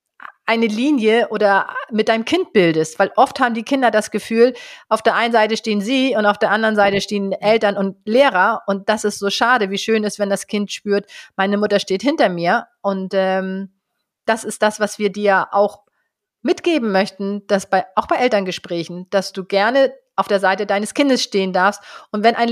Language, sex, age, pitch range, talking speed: German, female, 30-49, 195-235 Hz, 200 wpm